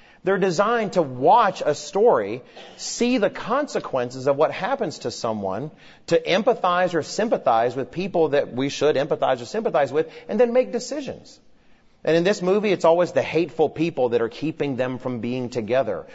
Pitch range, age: 120-195 Hz, 40-59